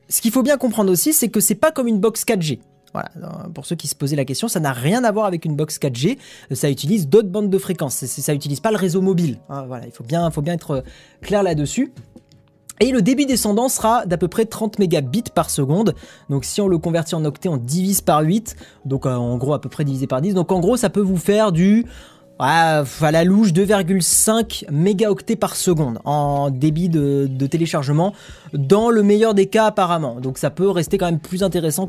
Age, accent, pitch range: 20-39, French, 145-200 Hz